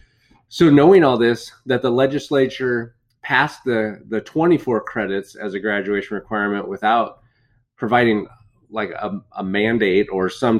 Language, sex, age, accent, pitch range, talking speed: English, male, 30-49, American, 110-135 Hz, 135 wpm